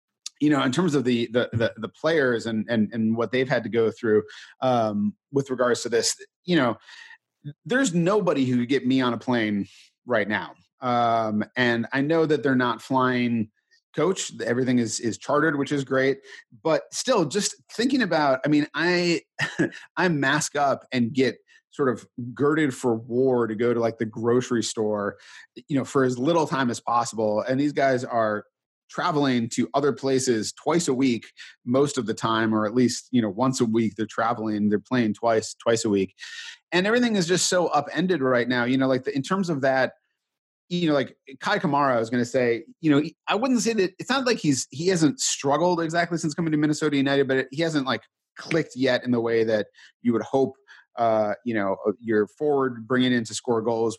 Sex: male